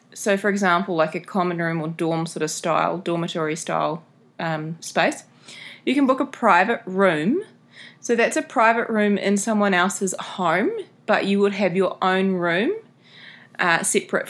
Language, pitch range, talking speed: English, 170-210 Hz, 170 wpm